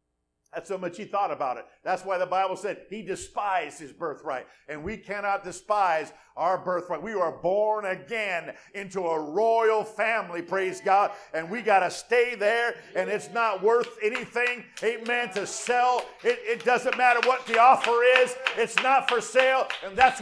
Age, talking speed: 50-69, 180 wpm